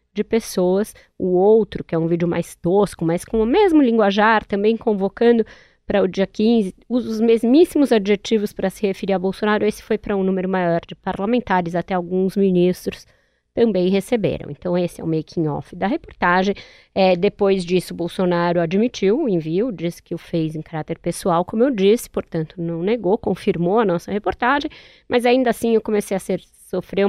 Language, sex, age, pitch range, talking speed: Portuguese, female, 20-39, 175-220 Hz, 180 wpm